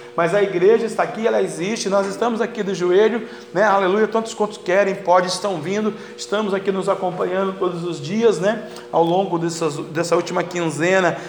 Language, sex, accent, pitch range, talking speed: Portuguese, male, Brazilian, 180-210 Hz, 180 wpm